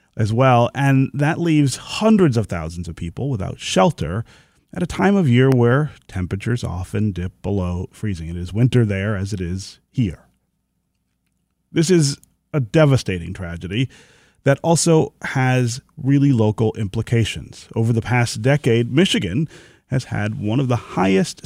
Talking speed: 150 wpm